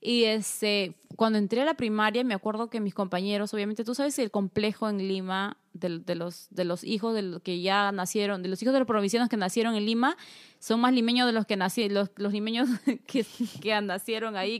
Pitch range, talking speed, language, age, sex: 200-240 Hz, 220 wpm, English, 20-39, female